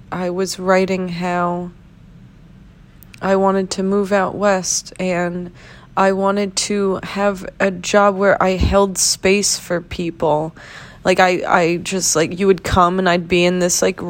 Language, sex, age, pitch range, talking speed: English, female, 20-39, 180-230 Hz, 160 wpm